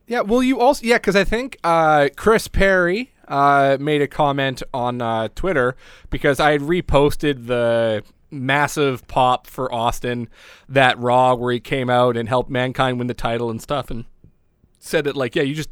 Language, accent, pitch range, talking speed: English, American, 125-160 Hz, 185 wpm